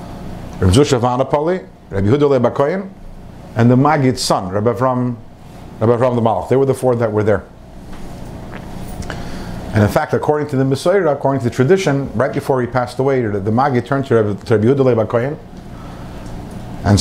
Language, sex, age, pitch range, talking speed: English, male, 50-69, 110-150 Hz, 150 wpm